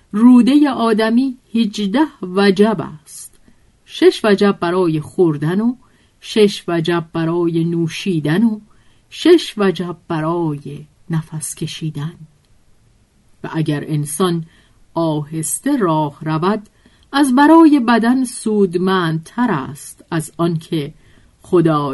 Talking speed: 95 wpm